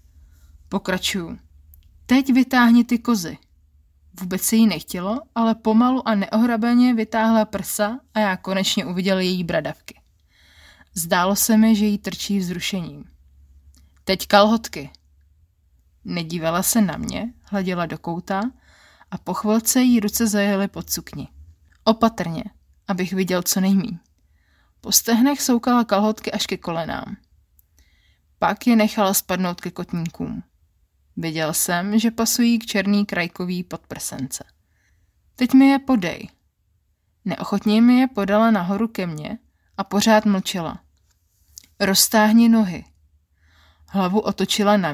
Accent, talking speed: native, 120 wpm